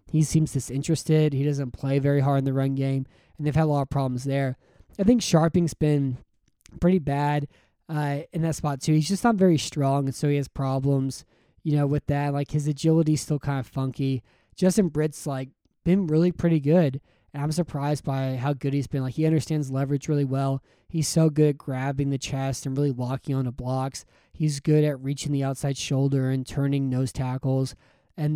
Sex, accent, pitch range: male, American, 135-150 Hz